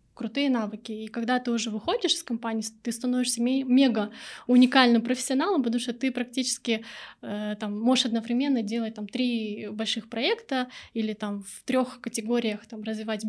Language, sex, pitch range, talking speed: Russian, female, 220-255 Hz, 130 wpm